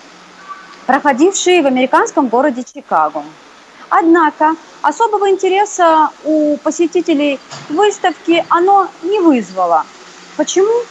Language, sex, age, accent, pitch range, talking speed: Russian, female, 30-49, native, 270-365 Hz, 85 wpm